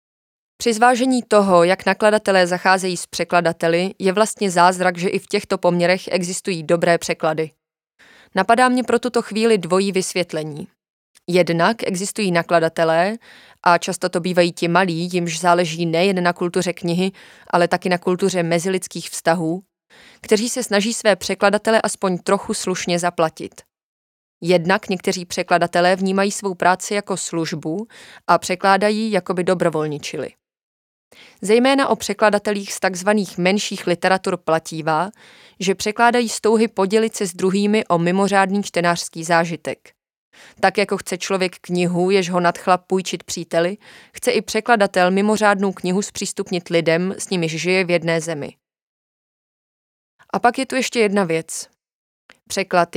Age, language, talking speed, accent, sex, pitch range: 20-39, Czech, 135 wpm, native, female, 175-200 Hz